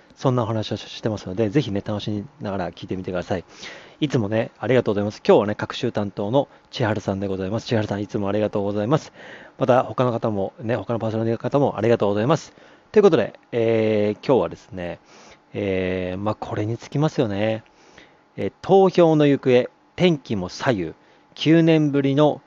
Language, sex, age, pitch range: Japanese, male, 40-59, 100-125 Hz